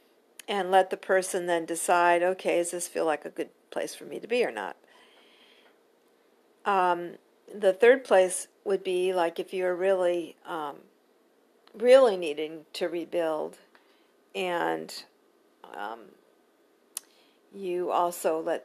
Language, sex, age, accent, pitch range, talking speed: English, female, 50-69, American, 180-240 Hz, 130 wpm